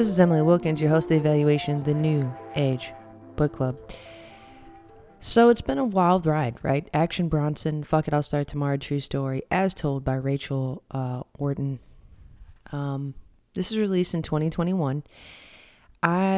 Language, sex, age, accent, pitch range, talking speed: English, female, 20-39, American, 140-175 Hz, 150 wpm